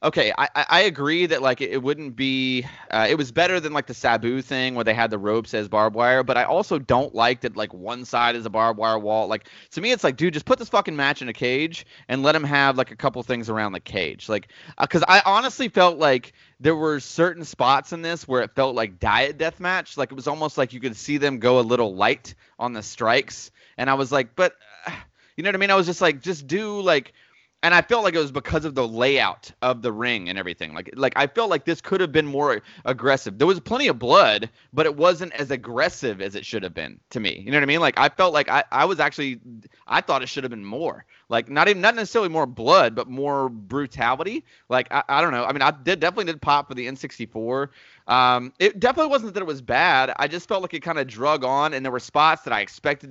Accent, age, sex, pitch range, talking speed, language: American, 20-39, male, 125-165 Hz, 260 wpm, English